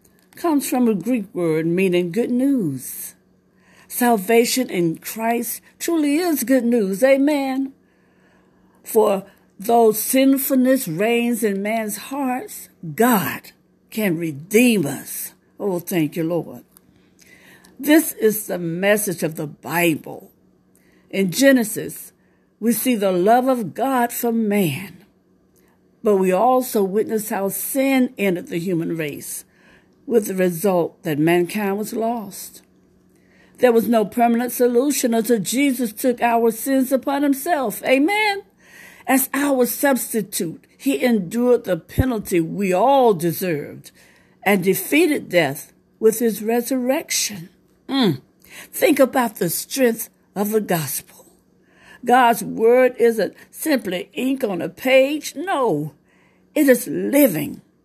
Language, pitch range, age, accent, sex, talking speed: English, 190-260 Hz, 60-79, American, female, 120 wpm